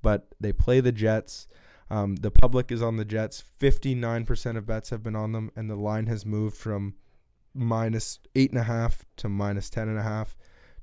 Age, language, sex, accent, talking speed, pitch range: 20-39, English, male, American, 165 wpm, 100-115 Hz